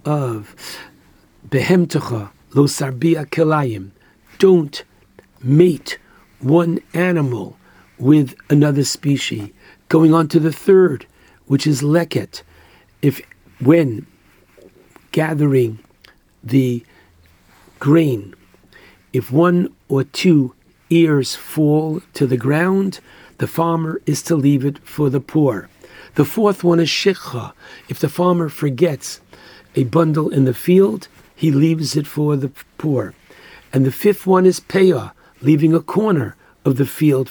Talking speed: 115 wpm